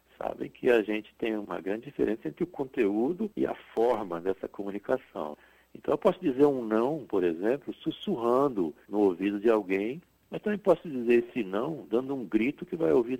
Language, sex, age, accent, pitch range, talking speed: Portuguese, male, 60-79, Brazilian, 105-140 Hz, 185 wpm